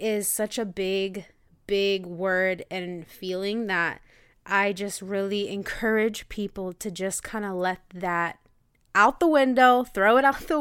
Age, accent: 20-39, American